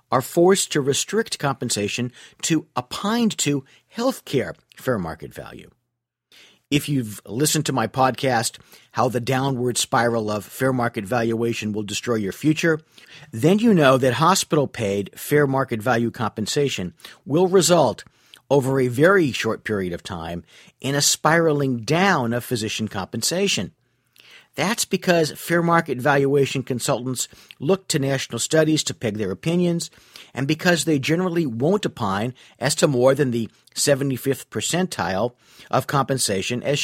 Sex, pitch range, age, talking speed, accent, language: male, 115-155 Hz, 50-69, 140 wpm, American, English